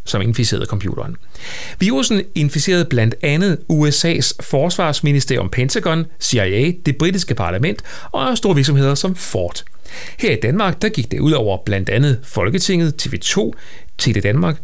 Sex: male